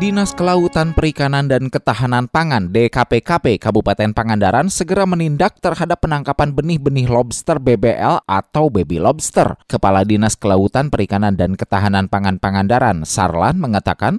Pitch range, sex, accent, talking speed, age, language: 105-165 Hz, male, native, 125 wpm, 20-39, Indonesian